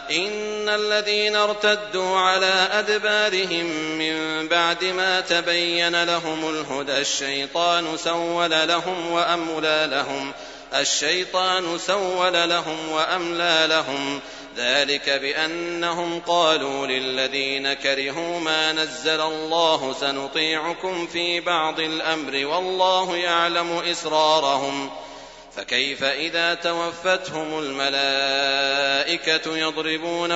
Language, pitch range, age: Arabic, 140-175 Hz, 40-59